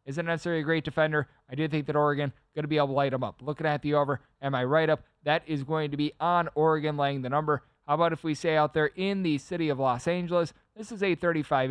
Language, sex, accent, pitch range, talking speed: English, male, American, 145-175 Hz, 260 wpm